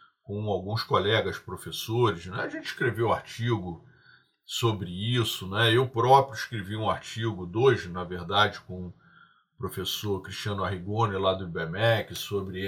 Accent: Brazilian